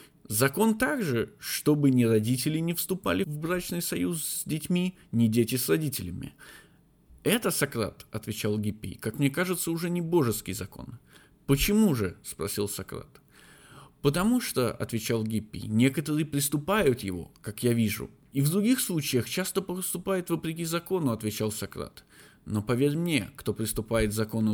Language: Russian